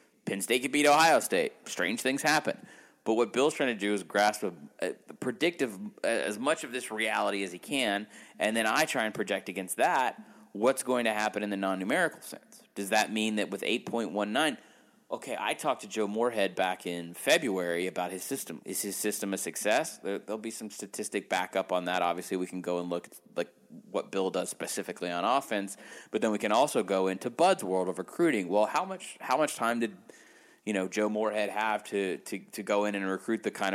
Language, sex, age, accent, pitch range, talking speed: English, male, 30-49, American, 95-115 Hz, 220 wpm